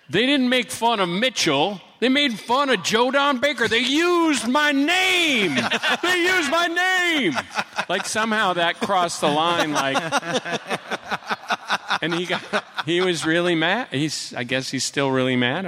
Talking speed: 160 wpm